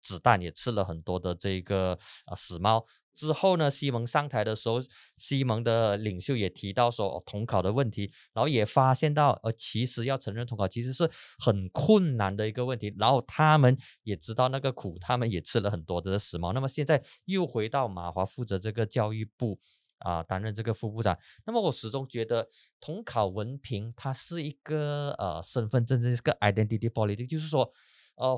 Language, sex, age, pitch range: Chinese, male, 20-39, 105-150 Hz